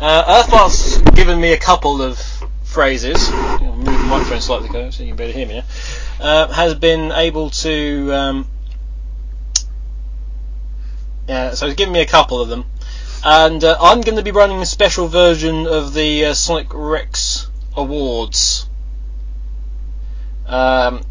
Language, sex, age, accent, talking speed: English, male, 20-39, British, 145 wpm